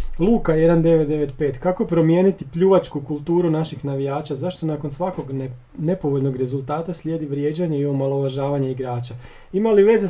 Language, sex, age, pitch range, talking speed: Croatian, male, 40-59, 140-185 Hz, 120 wpm